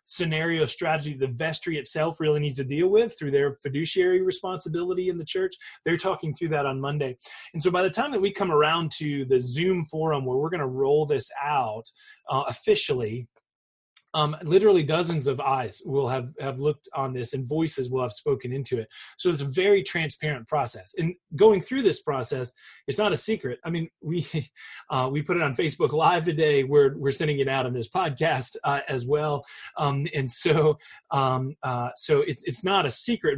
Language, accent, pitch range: English, American, 135-180 Hz